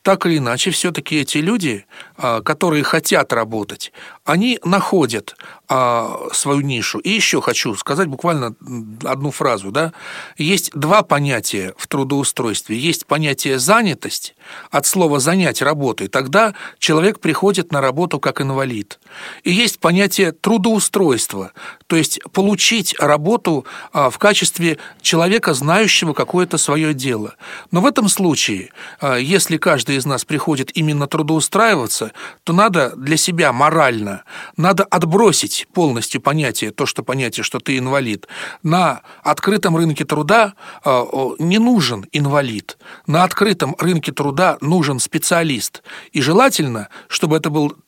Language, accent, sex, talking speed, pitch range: Russian, native, male, 125 wpm, 135-185 Hz